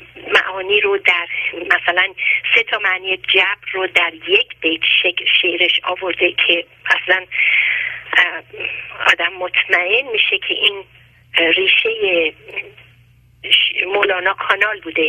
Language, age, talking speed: Persian, 40-59, 100 wpm